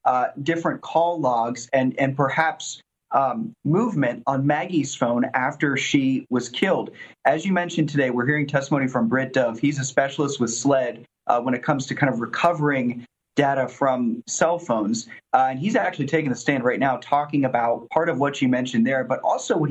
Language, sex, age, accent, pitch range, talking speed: English, male, 30-49, American, 125-150 Hz, 190 wpm